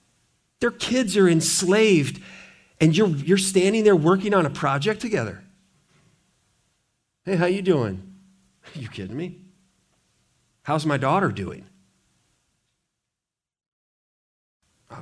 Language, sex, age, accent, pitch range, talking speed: English, male, 40-59, American, 140-185 Hz, 110 wpm